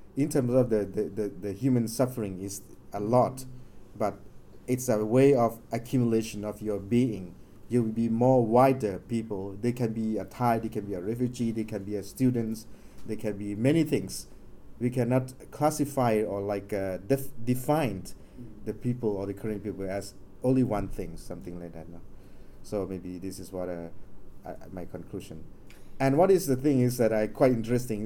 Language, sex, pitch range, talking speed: English, male, 105-135 Hz, 185 wpm